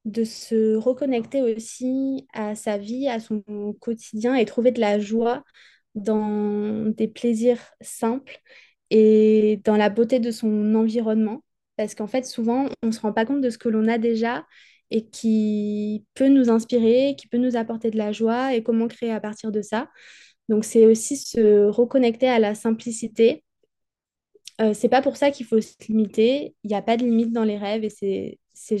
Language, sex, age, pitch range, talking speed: French, female, 20-39, 215-245 Hz, 190 wpm